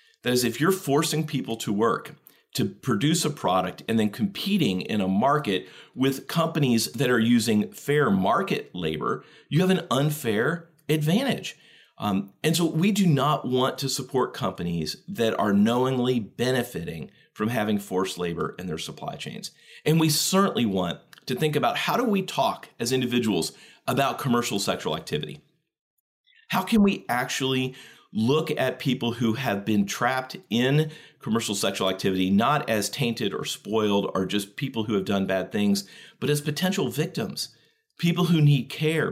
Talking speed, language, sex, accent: 165 wpm, English, male, American